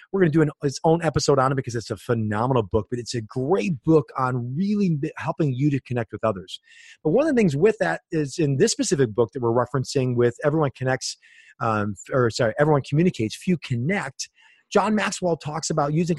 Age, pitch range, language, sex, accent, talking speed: 30-49, 130-185 Hz, English, male, American, 210 wpm